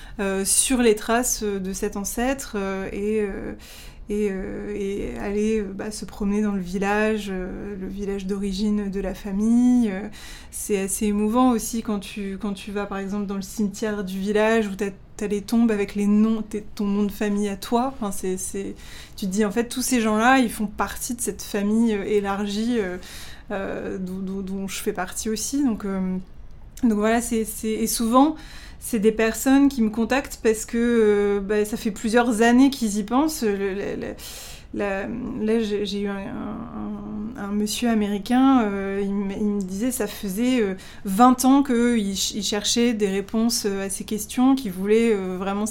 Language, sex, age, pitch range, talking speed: French, female, 20-39, 200-230 Hz, 185 wpm